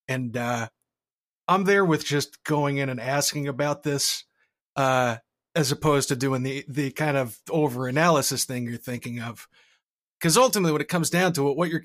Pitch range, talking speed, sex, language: 130-160 Hz, 185 wpm, male, English